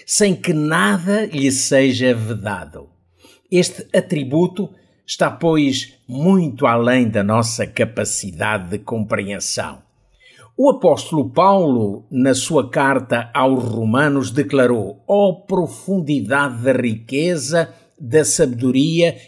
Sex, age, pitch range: male, 50-69, 125-175 Hz